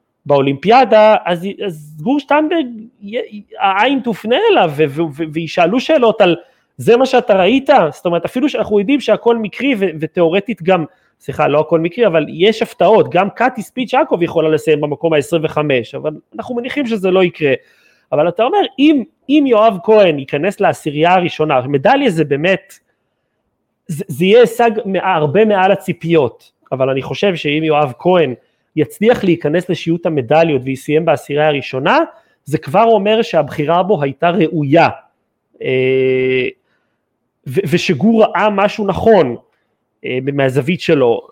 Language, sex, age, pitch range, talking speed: Hebrew, male, 30-49, 150-220 Hz, 135 wpm